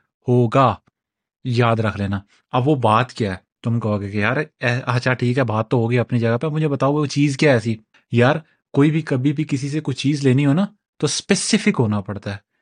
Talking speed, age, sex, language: 225 wpm, 30-49, male, Urdu